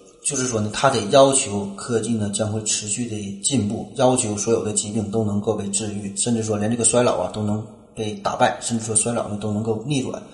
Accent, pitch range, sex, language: native, 105-125 Hz, male, Chinese